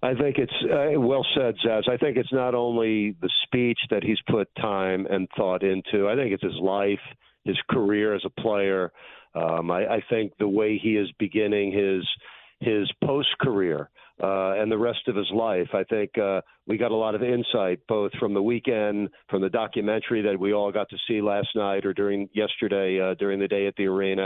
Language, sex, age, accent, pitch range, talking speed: English, male, 50-69, American, 100-120 Hz, 210 wpm